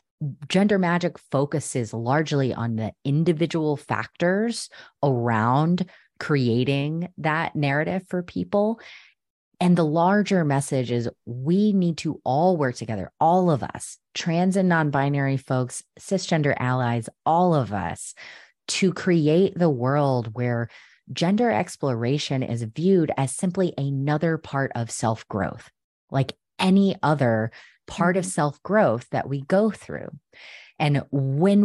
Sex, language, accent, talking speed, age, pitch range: female, English, American, 125 wpm, 30-49, 125-170 Hz